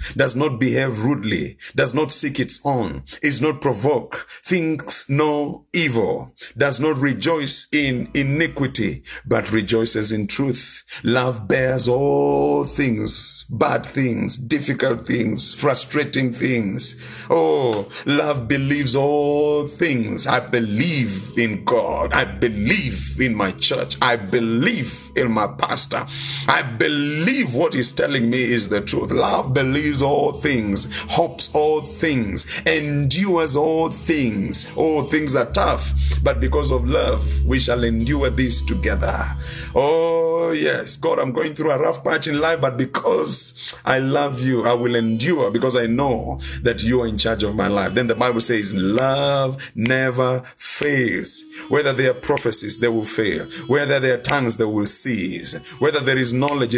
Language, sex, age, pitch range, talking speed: English, male, 50-69, 115-145 Hz, 150 wpm